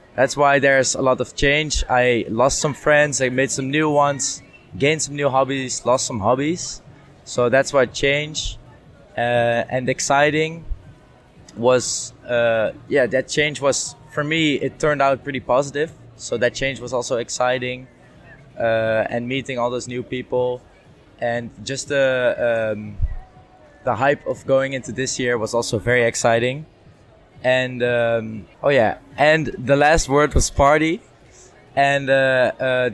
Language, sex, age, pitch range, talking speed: English, male, 20-39, 125-140 Hz, 150 wpm